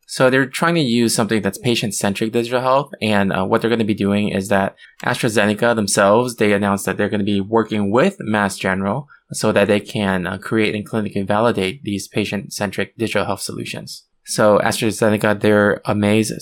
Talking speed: 185 wpm